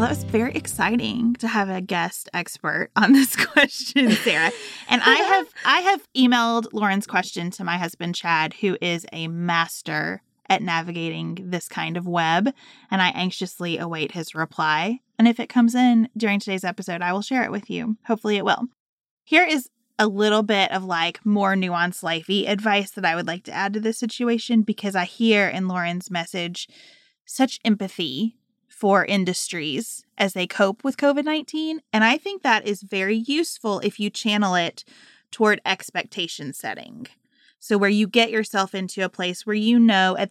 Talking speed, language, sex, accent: 180 wpm, English, female, American